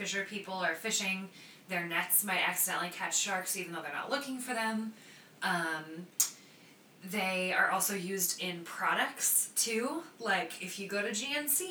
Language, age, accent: English, 20-39, American